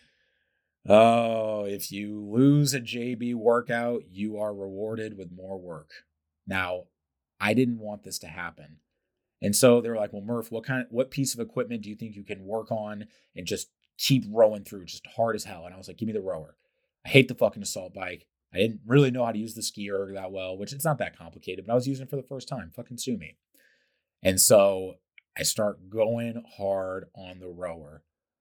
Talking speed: 215 wpm